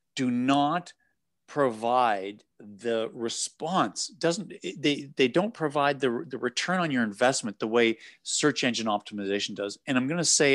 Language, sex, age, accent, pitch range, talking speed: English, male, 50-69, American, 120-160 Hz, 155 wpm